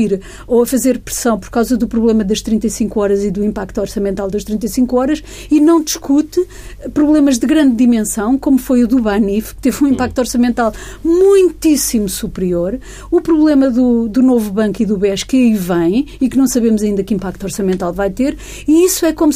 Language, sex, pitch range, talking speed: Portuguese, female, 210-295 Hz, 195 wpm